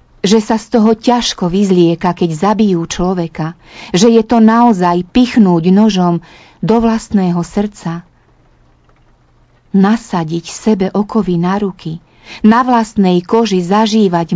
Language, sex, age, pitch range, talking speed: Slovak, female, 40-59, 170-220 Hz, 115 wpm